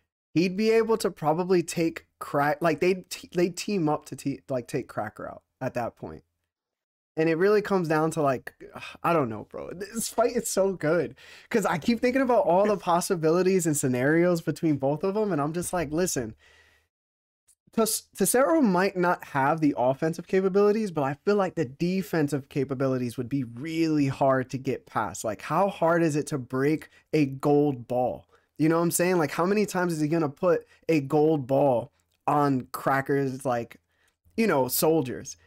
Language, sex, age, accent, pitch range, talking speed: English, male, 20-39, American, 140-195 Hz, 190 wpm